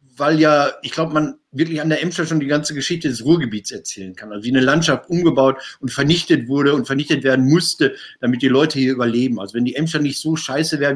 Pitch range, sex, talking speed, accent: 135-175 Hz, male, 230 wpm, German